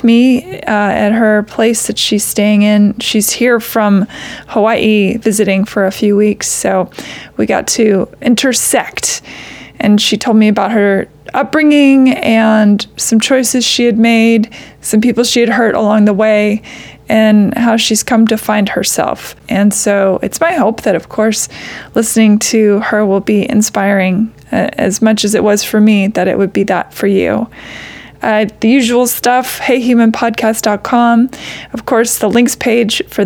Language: English